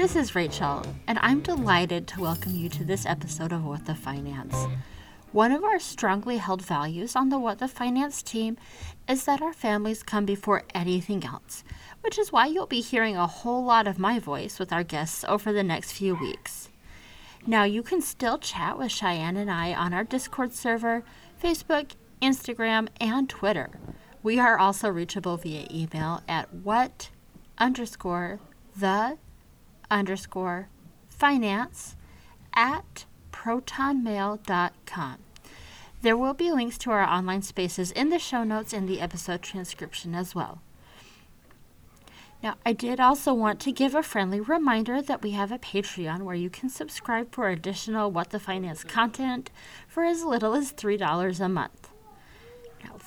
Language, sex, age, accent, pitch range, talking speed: English, female, 30-49, American, 185-250 Hz, 155 wpm